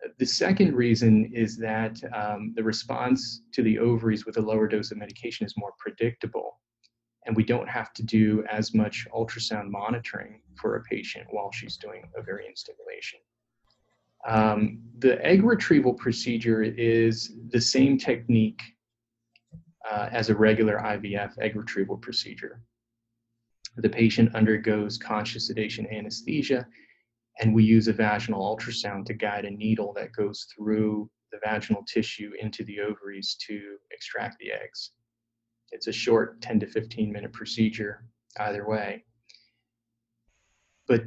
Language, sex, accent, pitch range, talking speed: English, male, American, 110-115 Hz, 140 wpm